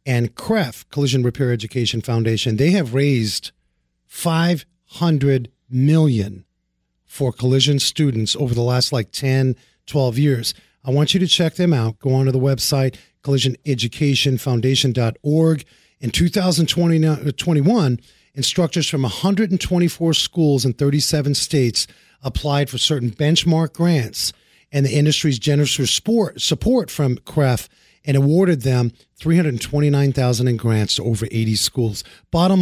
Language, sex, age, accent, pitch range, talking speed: English, male, 40-59, American, 125-165 Hz, 120 wpm